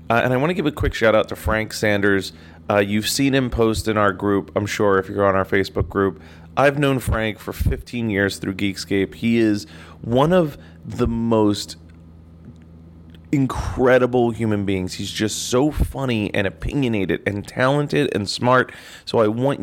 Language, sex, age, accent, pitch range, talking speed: English, male, 30-49, American, 100-120 Hz, 180 wpm